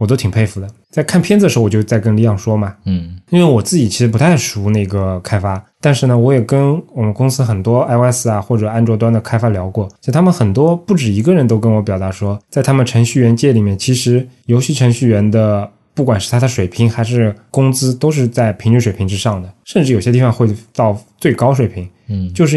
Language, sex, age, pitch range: Chinese, male, 20-39, 105-125 Hz